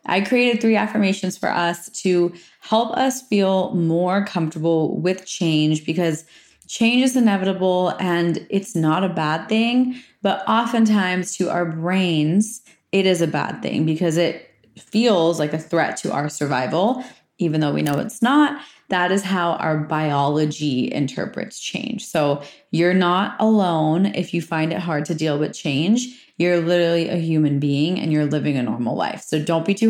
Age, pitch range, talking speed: 20-39, 160-205 Hz, 170 wpm